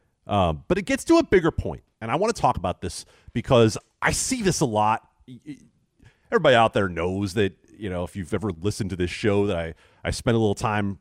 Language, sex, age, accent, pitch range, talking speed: English, male, 40-59, American, 90-135 Hz, 230 wpm